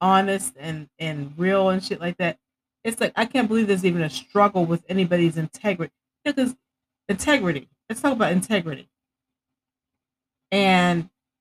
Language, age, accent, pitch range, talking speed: English, 40-59, American, 150-200 Hz, 140 wpm